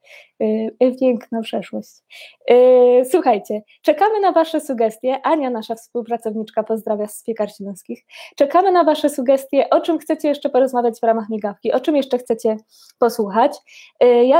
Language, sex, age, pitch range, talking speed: Polish, female, 20-39, 225-280 Hz, 130 wpm